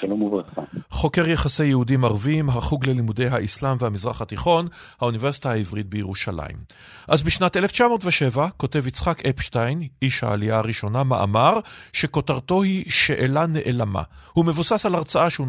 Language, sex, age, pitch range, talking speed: Hebrew, male, 40-59, 125-165 Hz, 120 wpm